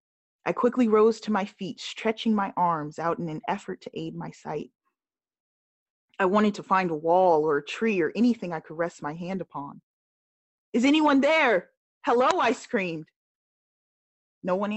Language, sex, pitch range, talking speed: English, female, 170-215 Hz, 170 wpm